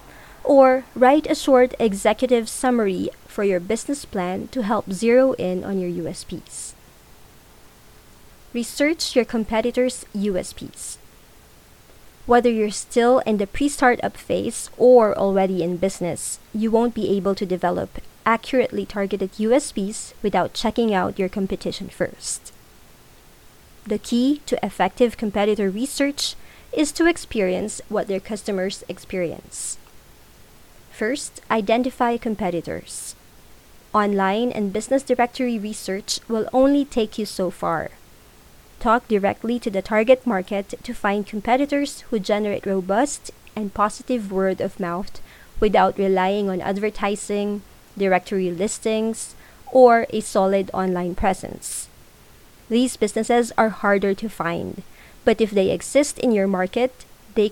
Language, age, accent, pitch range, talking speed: English, 20-39, Filipino, 195-240 Hz, 120 wpm